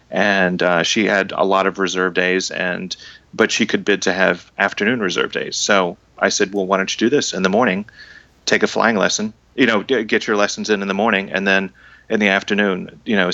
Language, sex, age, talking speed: English, male, 30-49, 230 wpm